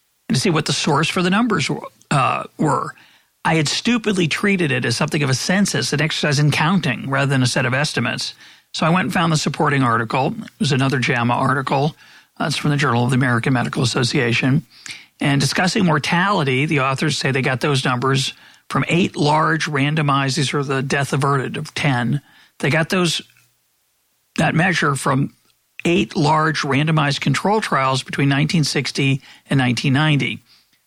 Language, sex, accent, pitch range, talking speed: English, male, American, 135-170 Hz, 175 wpm